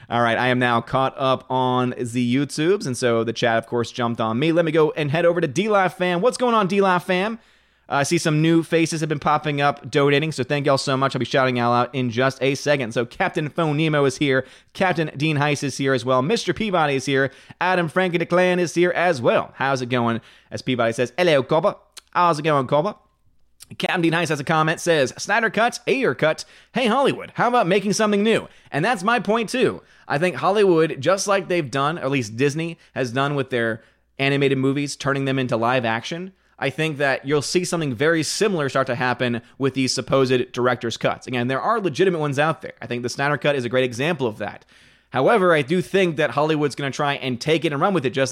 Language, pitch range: English, 130-175 Hz